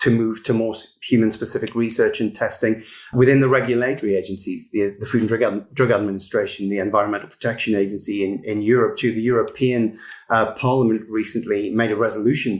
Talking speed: 165 wpm